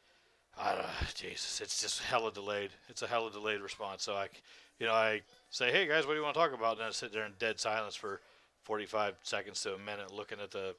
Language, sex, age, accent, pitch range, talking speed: English, male, 40-59, American, 110-150 Hz, 230 wpm